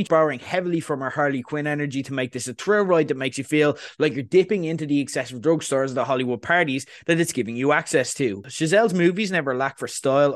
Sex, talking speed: male, 230 wpm